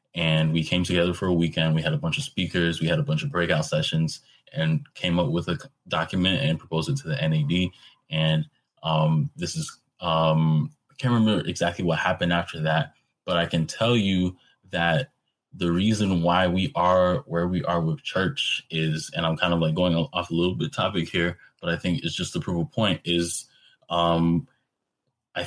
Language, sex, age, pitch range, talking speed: English, male, 20-39, 80-90 Hz, 205 wpm